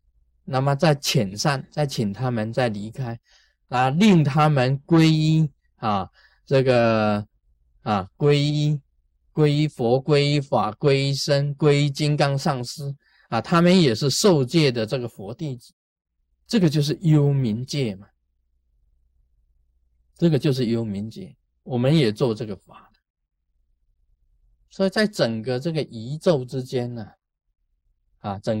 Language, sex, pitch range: Chinese, male, 105-155 Hz